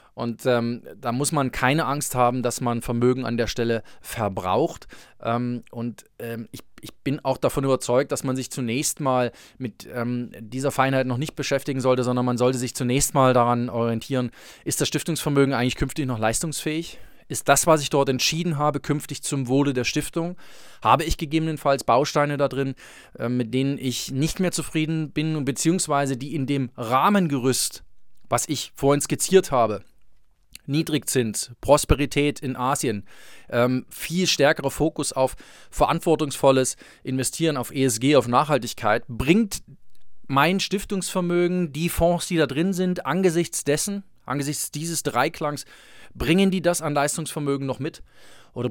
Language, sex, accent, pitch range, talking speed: German, male, German, 125-155 Hz, 155 wpm